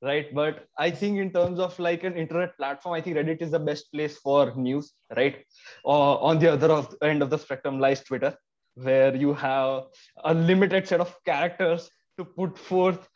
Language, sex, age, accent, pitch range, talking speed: English, male, 20-39, Indian, 150-185 Hz, 200 wpm